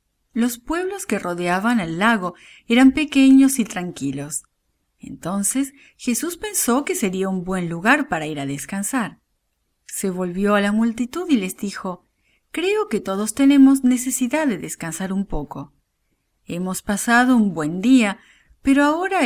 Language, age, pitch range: English, 40-59, 185-270 Hz